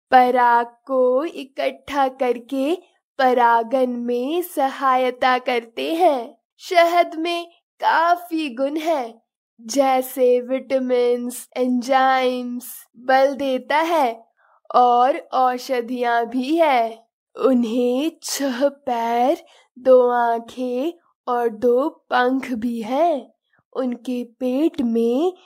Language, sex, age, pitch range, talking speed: Hindi, female, 10-29, 245-305 Hz, 85 wpm